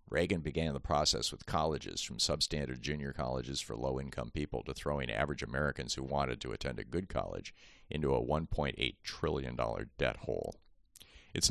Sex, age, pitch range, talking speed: male, 50-69, 65-80 Hz, 160 wpm